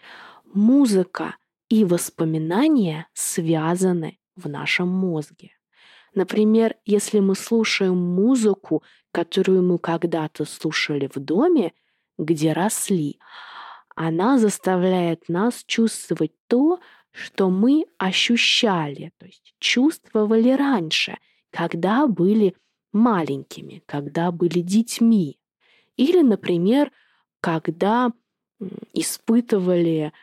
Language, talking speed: Russian, 85 wpm